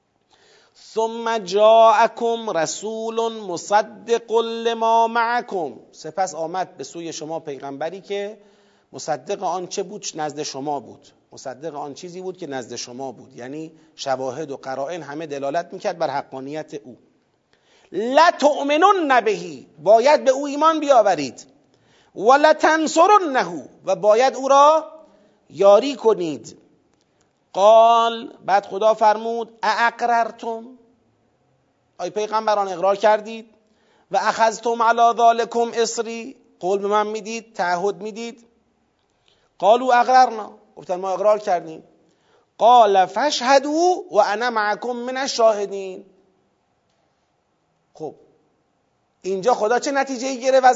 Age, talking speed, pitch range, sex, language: 40-59, 105 wpm, 185-240 Hz, male, Persian